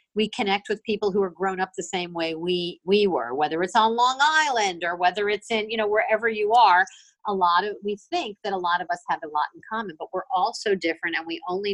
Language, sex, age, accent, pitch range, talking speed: English, female, 50-69, American, 175-265 Hz, 260 wpm